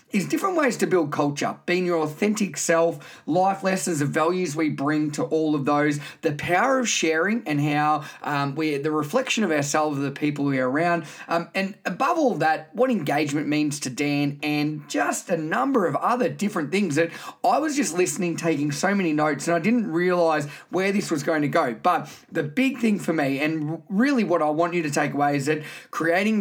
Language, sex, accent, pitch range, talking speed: English, male, Australian, 150-185 Hz, 210 wpm